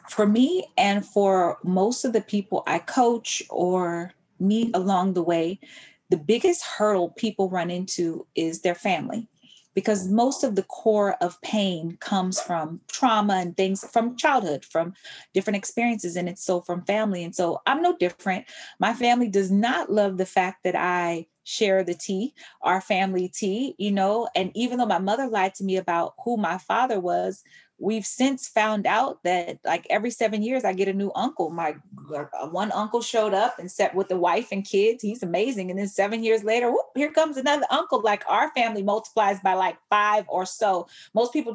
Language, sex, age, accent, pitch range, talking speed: English, female, 30-49, American, 190-260 Hz, 190 wpm